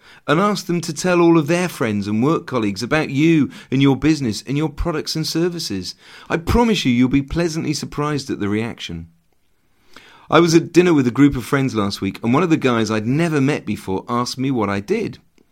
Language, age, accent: English, 40-59, British